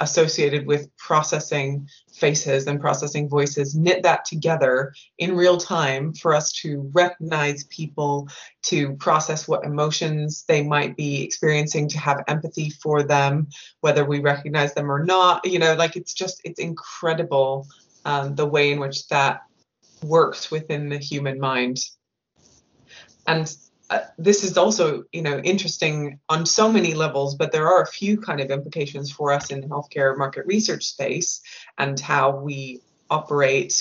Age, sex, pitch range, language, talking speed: 20-39, female, 140-160 Hz, English, 155 wpm